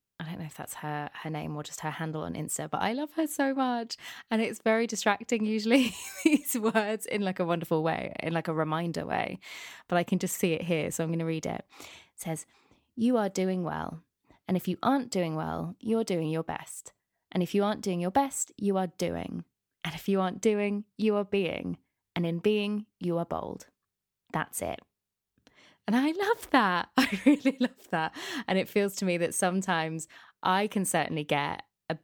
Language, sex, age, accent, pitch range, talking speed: English, female, 20-39, British, 160-205 Hz, 210 wpm